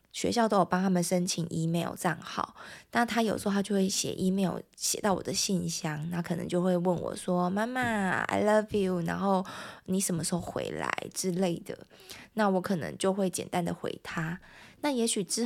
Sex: female